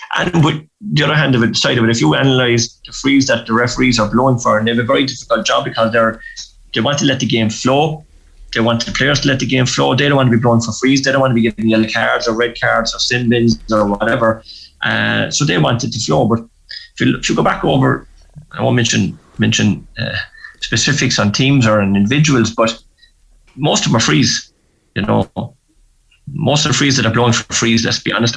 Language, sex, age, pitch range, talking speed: English, male, 30-49, 110-135 Hz, 245 wpm